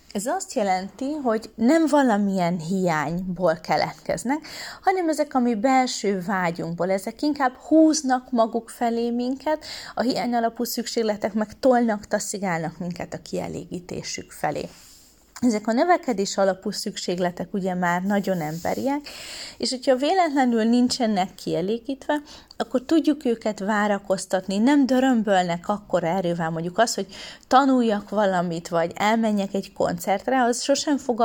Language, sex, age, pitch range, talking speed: Hungarian, female, 30-49, 185-255 Hz, 125 wpm